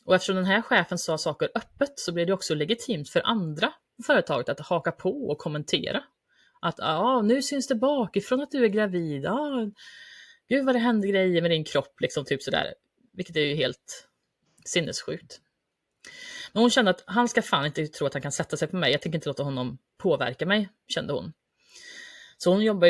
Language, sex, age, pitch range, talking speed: Swedish, female, 30-49, 160-230 Hz, 205 wpm